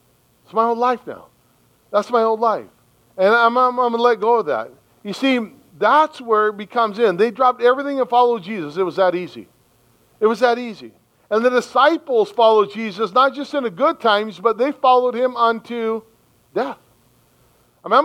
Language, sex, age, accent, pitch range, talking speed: English, male, 40-59, American, 200-260 Hz, 190 wpm